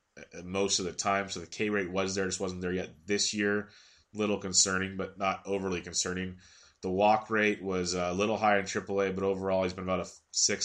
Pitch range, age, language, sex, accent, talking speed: 90-100 Hz, 30-49, English, male, American, 215 wpm